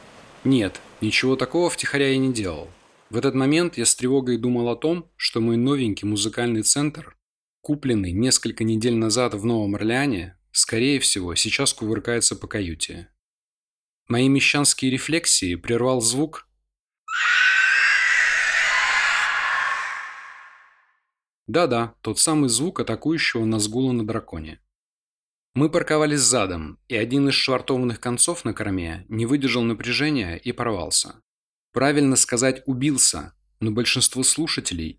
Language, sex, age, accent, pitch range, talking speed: Russian, male, 20-39, native, 110-140 Hz, 120 wpm